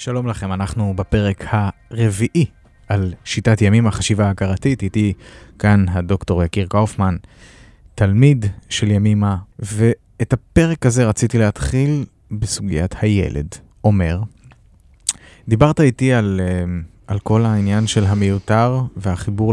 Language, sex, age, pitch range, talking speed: English, male, 20-39, 95-115 Hz, 110 wpm